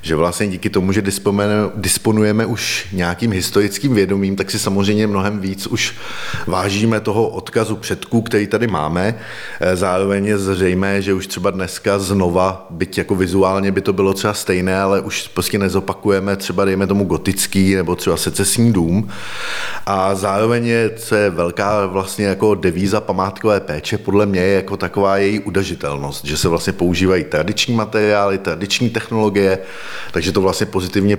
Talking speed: 155 wpm